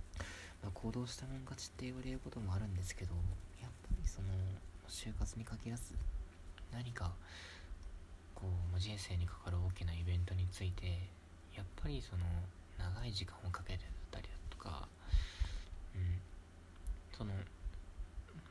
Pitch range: 80-95 Hz